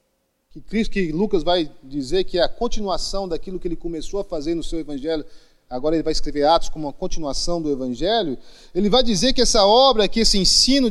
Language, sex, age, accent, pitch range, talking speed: English, male, 40-59, Brazilian, 195-255 Hz, 200 wpm